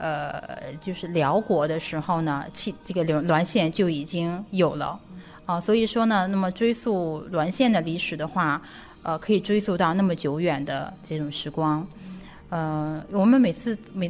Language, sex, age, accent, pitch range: Chinese, female, 30-49, native, 155-195 Hz